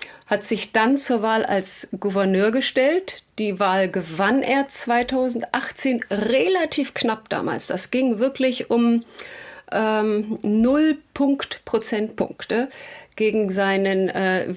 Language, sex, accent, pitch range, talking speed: German, female, German, 215-260 Hz, 105 wpm